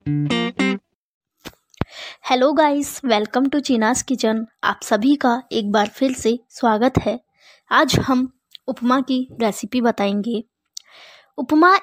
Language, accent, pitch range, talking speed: English, Indian, 220-260 Hz, 110 wpm